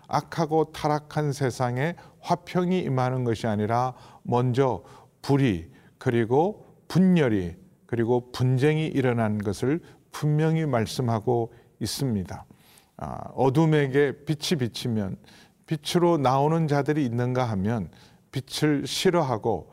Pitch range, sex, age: 115-150 Hz, male, 40-59